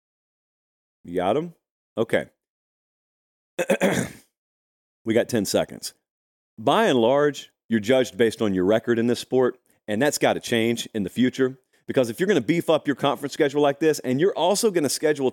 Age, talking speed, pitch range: 30-49, 180 wpm, 125-180 Hz